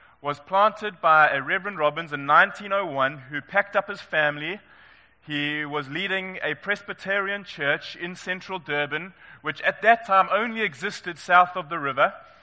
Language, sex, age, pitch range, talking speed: English, male, 20-39, 135-190 Hz, 155 wpm